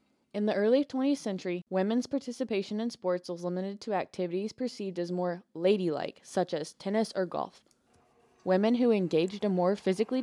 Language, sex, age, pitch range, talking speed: English, female, 20-39, 175-215 Hz, 165 wpm